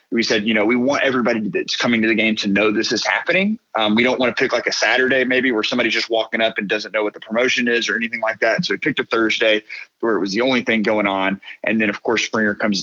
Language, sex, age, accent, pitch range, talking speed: English, male, 30-49, American, 110-140 Hz, 290 wpm